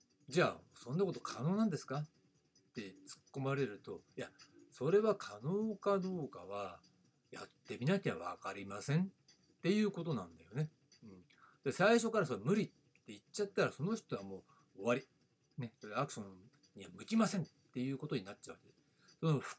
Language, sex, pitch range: Japanese, male, 120-180 Hz